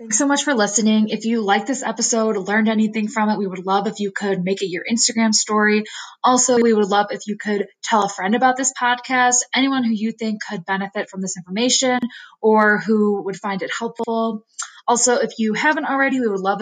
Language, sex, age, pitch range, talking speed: English, female, 20-39, 195-230 Hz, 220 wpm